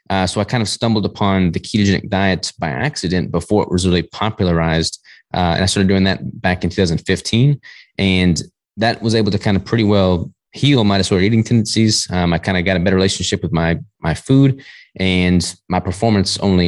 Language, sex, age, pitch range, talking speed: English, male, 20-39, 90-105 Hz, 200 wpm